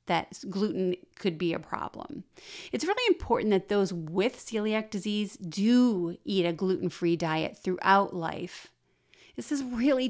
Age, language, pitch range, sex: 30-49, English, 180-225 Hz, female